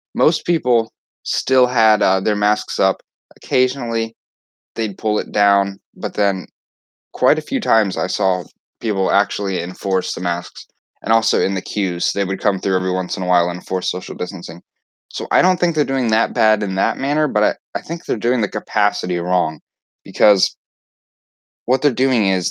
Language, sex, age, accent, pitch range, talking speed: English, male, 20-39, American, 95-120 Hz, 185 wpm